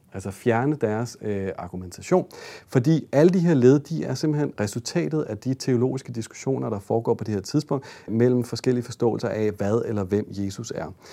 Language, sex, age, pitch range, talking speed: Danish, male, 40-59, 110-145 Hz, 165 wpm